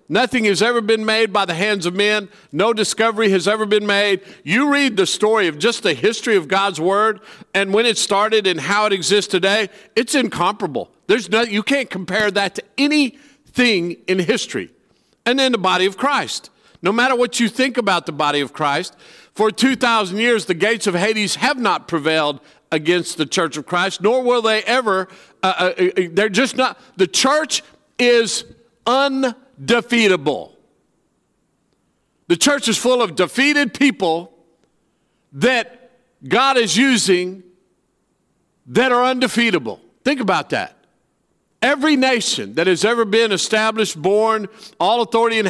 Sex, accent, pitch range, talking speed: male, American, 190-235 Hz, 160 wpm